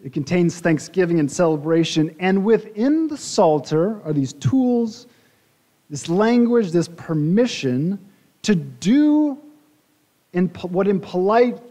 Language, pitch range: English, 140-200 Hz